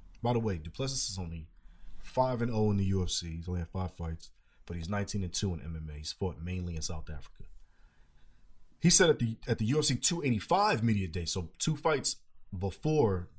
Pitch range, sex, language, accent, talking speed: 85-120 Hz, male, English, American, 180 wpm